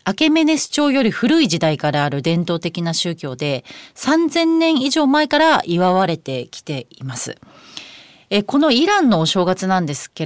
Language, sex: Japanese, female